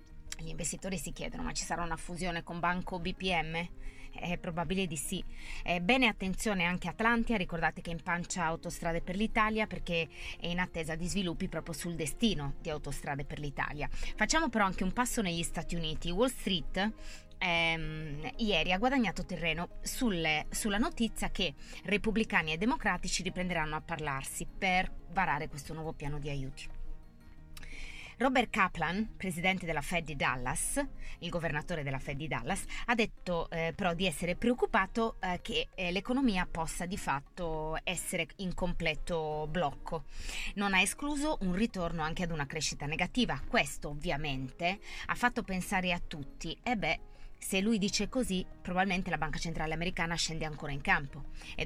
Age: 20-39